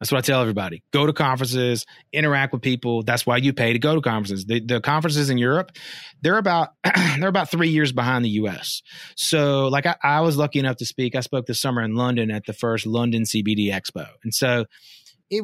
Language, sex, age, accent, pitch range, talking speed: English, male, 30-49, American, 115-140 Hz, 220 wpm